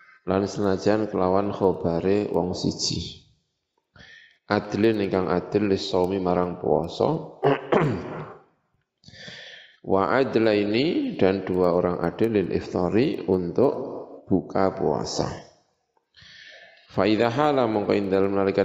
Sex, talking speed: male, 85 wpm